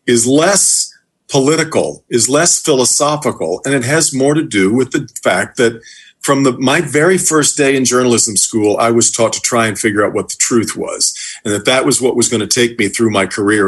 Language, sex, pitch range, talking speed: English, male, 115-140 Hz, 220 wpm